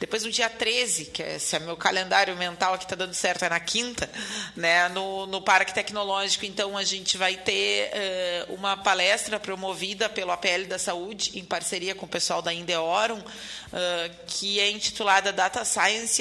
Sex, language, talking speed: female, Portuguese, 180 wpm